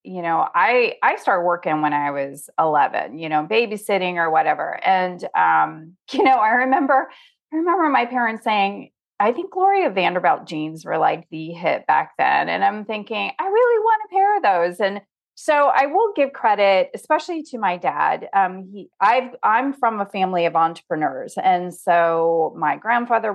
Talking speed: 180 wpm